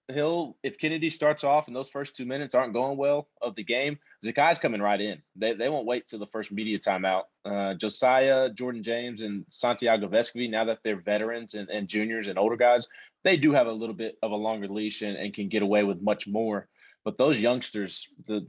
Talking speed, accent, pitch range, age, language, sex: 225 wpm, American, 105-130 Hz, 20-39, English, male